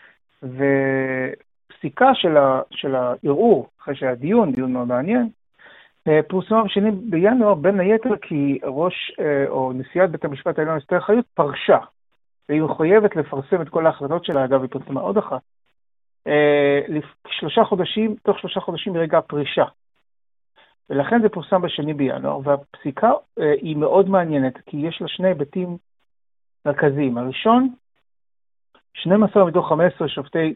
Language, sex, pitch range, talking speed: Hebrew, male, 140-190 Hz, 120 wpm